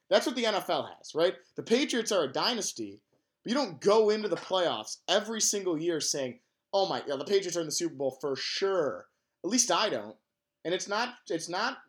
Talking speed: 215 wpm